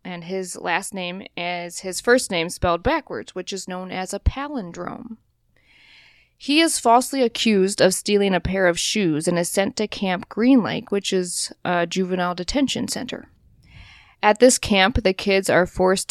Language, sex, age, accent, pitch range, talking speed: English, female, 20-39, American, 175-225 Hz, 170 wpm